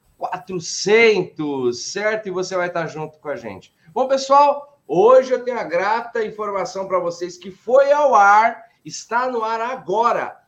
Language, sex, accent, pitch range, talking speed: Portuguese, male, Brazilian, 175-255 Hz, 160 wpm